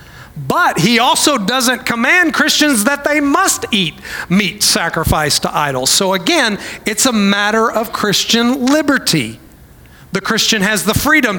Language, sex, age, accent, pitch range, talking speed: English, male, 40-59, American, 175-235 Hz, 140 wpm